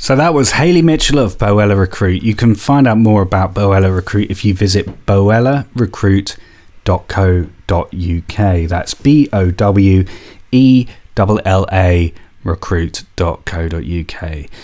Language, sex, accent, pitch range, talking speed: English, male, British, 95-110 Hz, 90 wpm